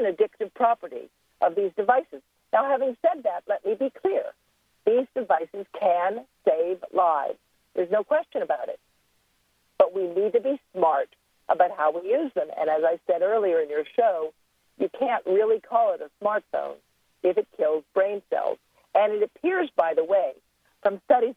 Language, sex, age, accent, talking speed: English, female, 50-69, American, 175 wpm